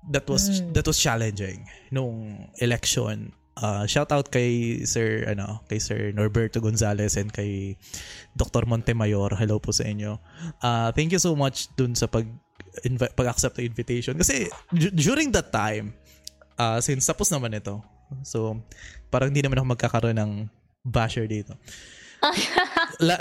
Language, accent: Filipino, native